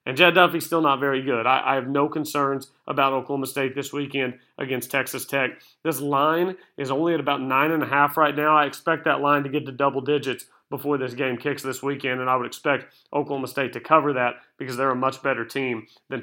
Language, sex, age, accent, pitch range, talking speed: English, male, 40-59, American, 135-170 Hz, 235 wpm